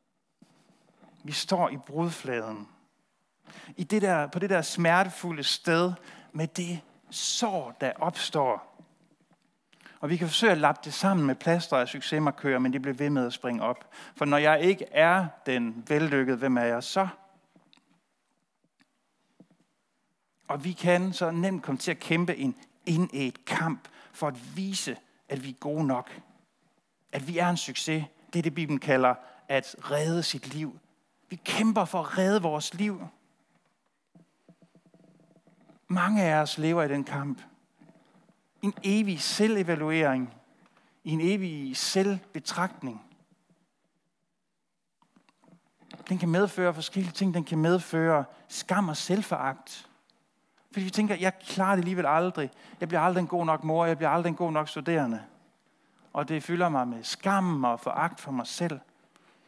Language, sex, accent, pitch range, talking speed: Danish, male, native, 145-185 Hz, 150 wpm